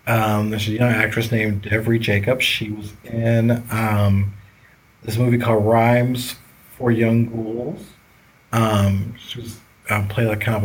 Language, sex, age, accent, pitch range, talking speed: English, male, 40-59, American, 105-125 Hz, 150 wpm